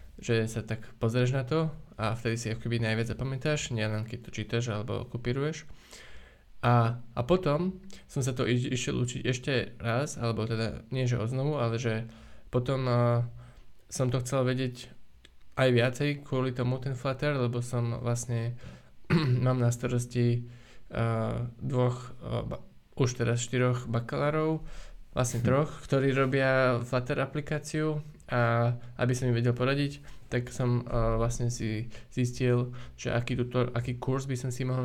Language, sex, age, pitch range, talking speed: Slovak, male, 20-39, 115-130 Hz, 155 wpm